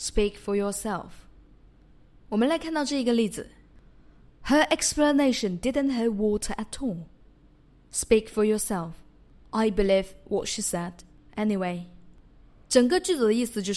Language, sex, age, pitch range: Chinese, female, 20-39, 200-250 Hz